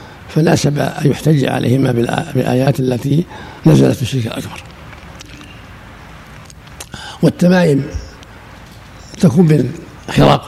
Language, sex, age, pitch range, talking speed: Arabic, male, 60-79, 120-150 Hz, 80 wpm